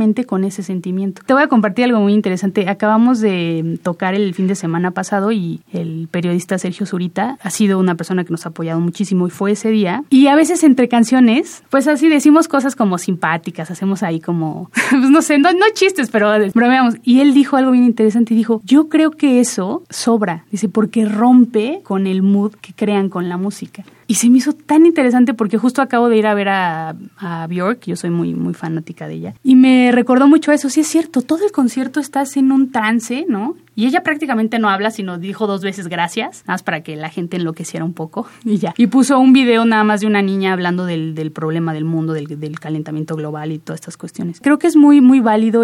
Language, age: Spanish, 30-49